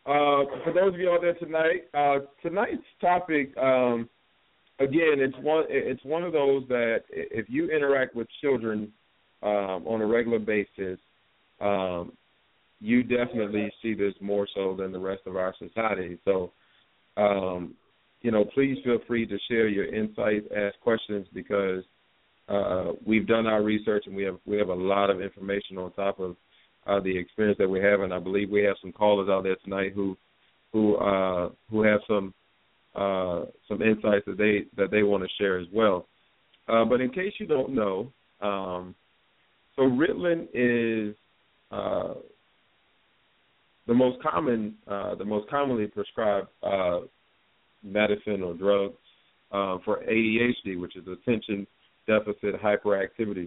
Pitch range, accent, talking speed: 95-120 Hz, American, 155 wpm